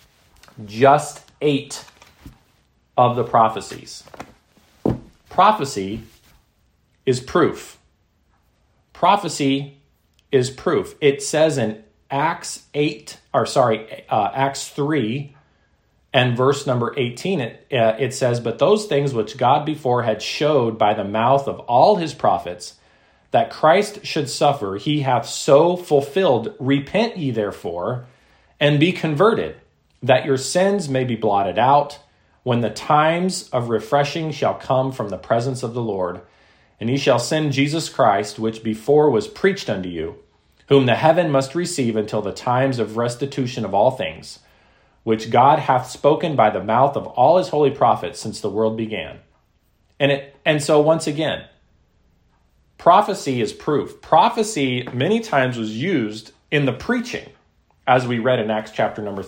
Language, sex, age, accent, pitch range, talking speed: English, male, 40-59, American, 110-145 Hz, 145 wpm